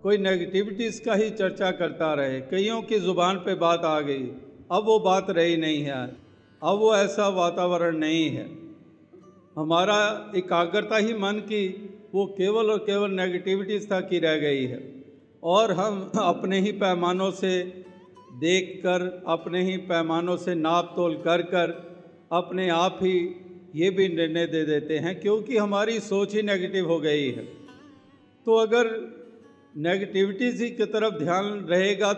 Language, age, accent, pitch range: Hindi, 50-69, native, 170-205 Hz